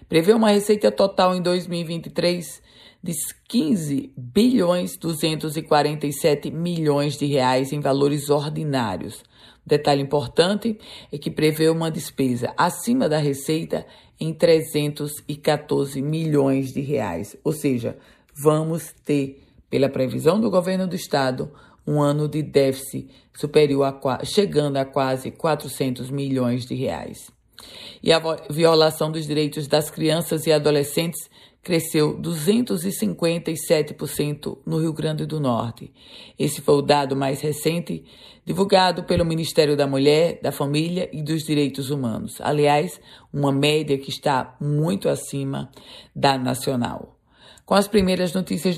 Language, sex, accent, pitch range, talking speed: Portuguese, female, Brazilian, 145-175 Hz, 125 wpm